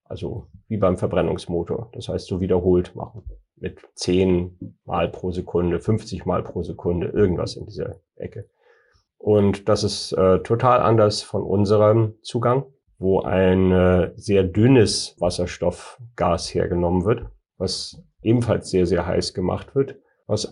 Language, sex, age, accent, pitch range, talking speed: German, male, 40-59, German, 90-110 Hz, 135 wpm